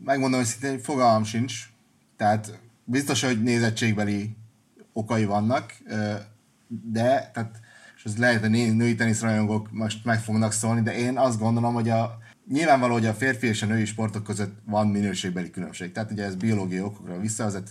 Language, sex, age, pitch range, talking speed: Hungarian, male, 30-49, 105-115 Hz, 160 wpm